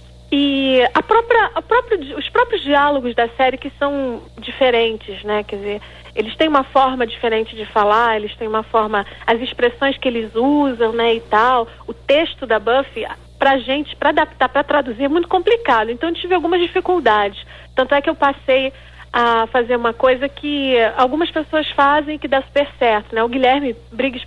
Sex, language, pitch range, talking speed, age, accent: female, Portuguese, 235-290 Hz, 185 wpm, 40-59, Brazilian